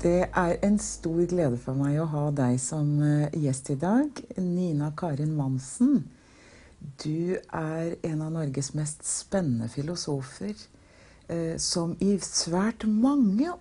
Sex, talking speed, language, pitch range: female, 135 wpm, English, 165-230 Hz